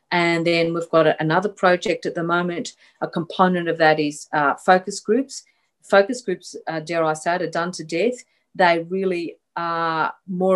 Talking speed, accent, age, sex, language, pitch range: 180 wpm, Australian, 40-59, female, English, 160-190 Hz